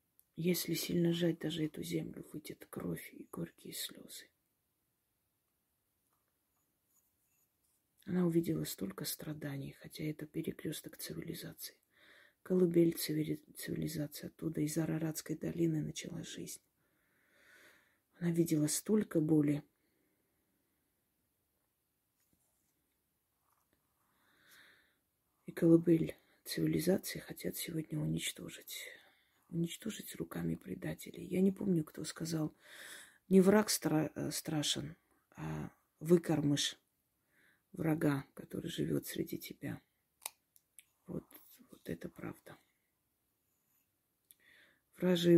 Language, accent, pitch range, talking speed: Russian, native, 150-170 Hz, 80 wpm